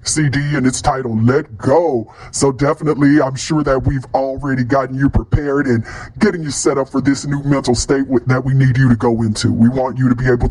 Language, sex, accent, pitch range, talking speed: English, female, American, 115-135 Hz, 230 wpm